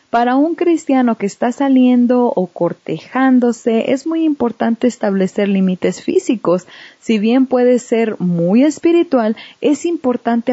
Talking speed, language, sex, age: 125 wpm, English, female, 30-49